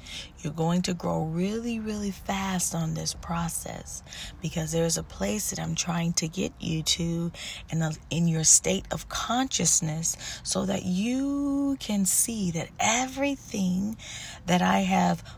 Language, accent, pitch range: English, American, 160-185 Hz